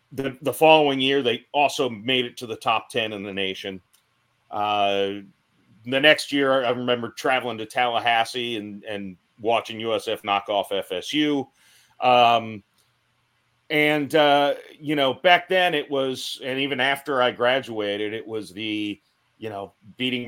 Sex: male